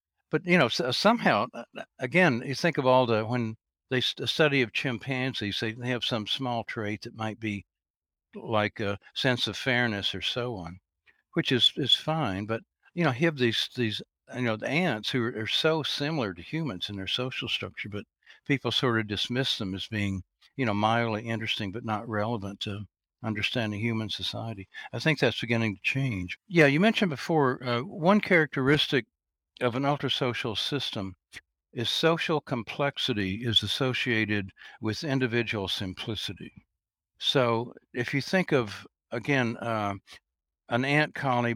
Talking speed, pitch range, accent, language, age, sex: 160 wpm, 105-130 Hz, American, English, 60-79, male